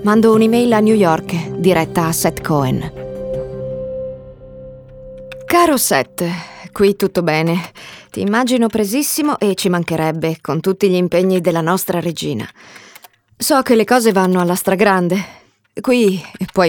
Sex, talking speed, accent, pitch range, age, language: female, 130 wpm, native, 175-220 Hz, 20-39, Italian